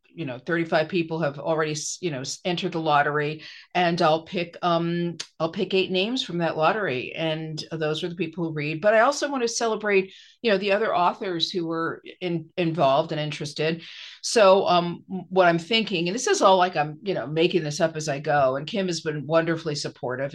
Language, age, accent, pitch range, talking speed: English, 50-69, American, 150-175 Hz, 210 wpm